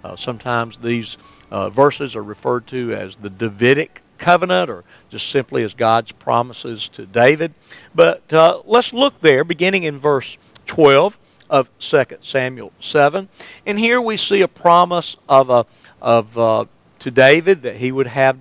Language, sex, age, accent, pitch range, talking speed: English, male, 50-69, American, 120-175 Hz, 160 wpm